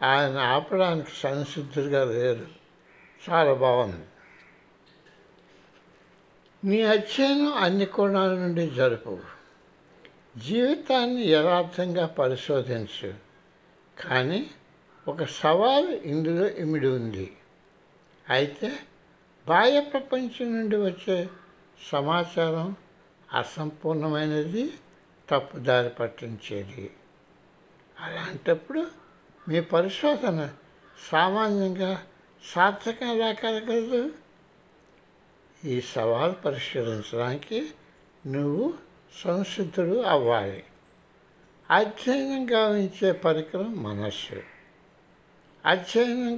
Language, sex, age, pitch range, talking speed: Telugu, male, 60-79, 140-220 Hz, 60 wpm